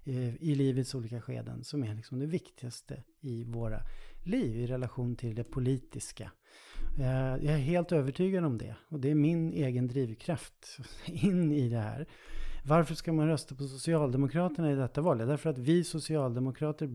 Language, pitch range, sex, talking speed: Swedish, 125-160 Hz, male, 170 wpm